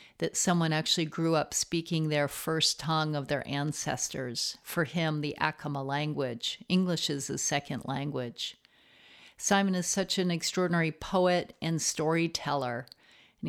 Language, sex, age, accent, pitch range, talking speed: English, female, 50-69, American, 150-180 Hz, 140 wpm